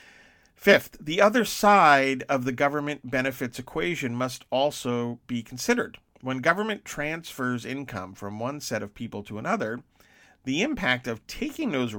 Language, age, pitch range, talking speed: English, 50-69, 110-140 Hz, 145 wpm